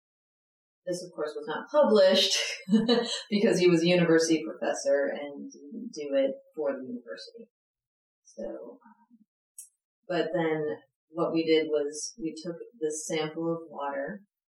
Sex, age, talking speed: female, 30-49, 135 wpm